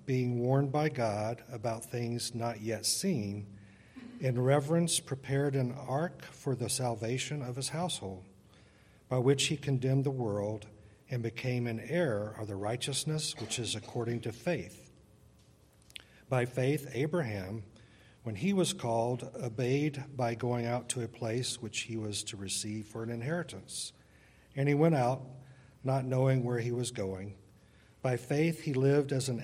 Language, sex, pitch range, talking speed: English, male, 110-135 Hz, 155 wpm